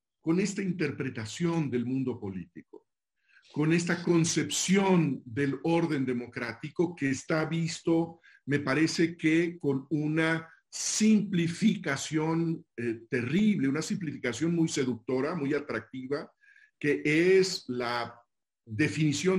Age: 50-69